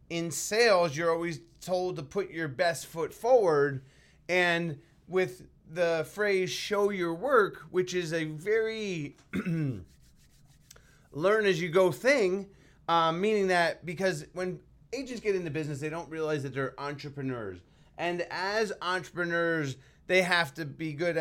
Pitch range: 150-185 Hz